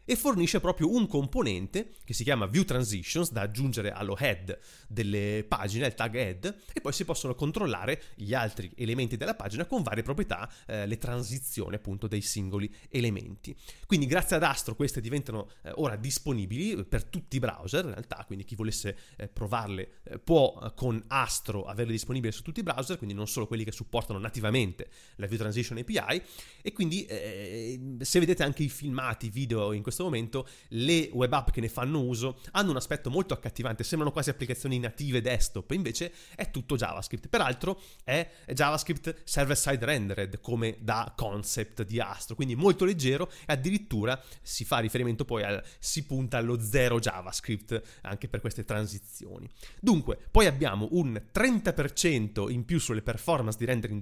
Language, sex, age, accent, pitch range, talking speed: Italian, male, 30-49, native, 110-145 Hz, 170 wpm